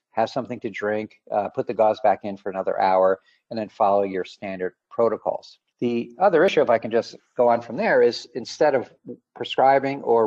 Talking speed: 205 wpm